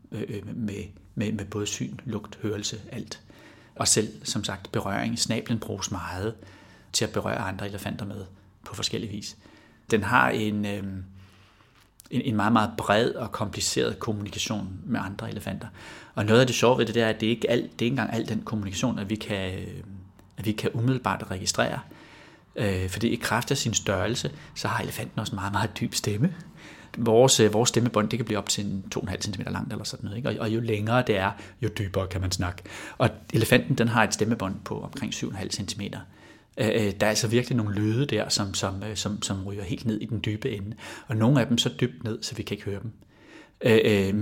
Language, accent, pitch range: Danish, native, 100-120 Hz